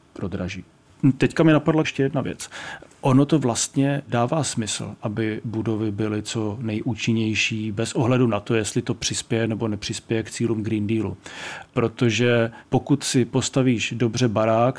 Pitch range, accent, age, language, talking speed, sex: 115-125 Hz, native, 40-59, Czech, 140 wpm, male